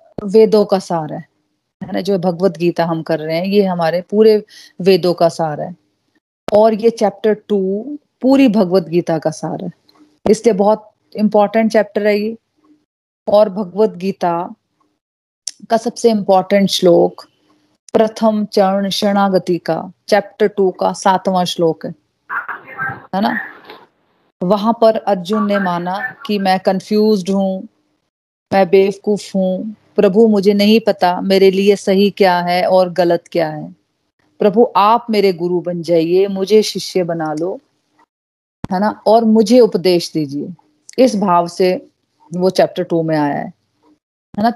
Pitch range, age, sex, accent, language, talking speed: 180-215 Hz, 30-49, female, native, Hindi, 145 wpm